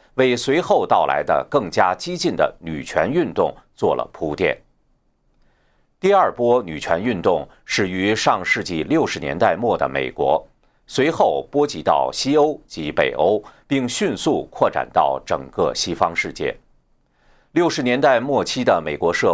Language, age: Chinese, 50-69